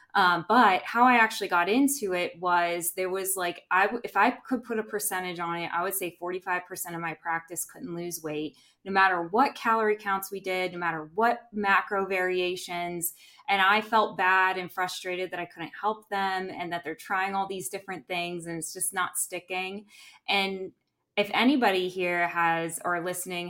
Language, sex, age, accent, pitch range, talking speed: English, female, 20-39, American, 175-215 Hz, 190 wpm